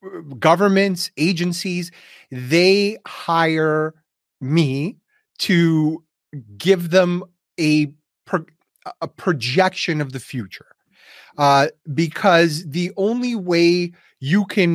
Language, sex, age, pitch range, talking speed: English, male, 30-49, 145-180 Hz, 85 wpm